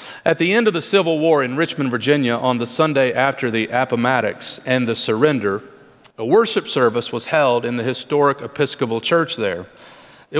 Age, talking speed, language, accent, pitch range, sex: 40-59, 180 wpm, English, American, 135-170 Hz, male